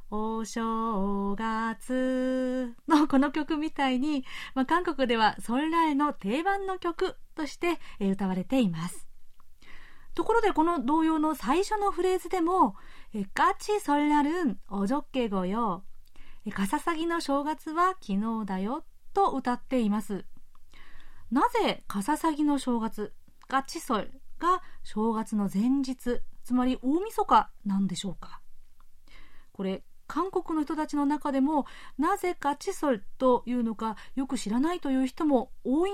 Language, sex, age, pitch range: Japanese, female, 40-59, 215-320 Hz